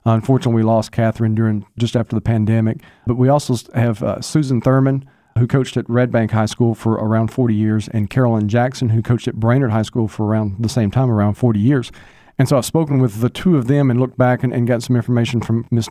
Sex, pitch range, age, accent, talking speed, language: male, 110-125 Hz, 40-59, American, 240 wpm, English